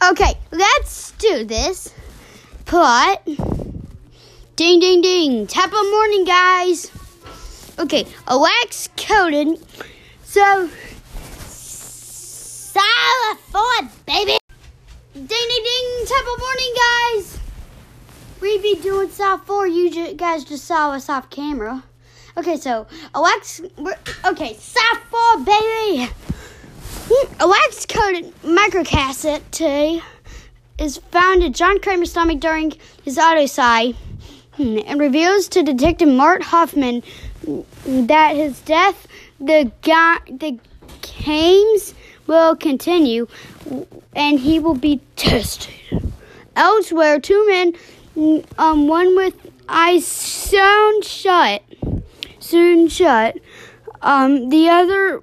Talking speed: 100 wpm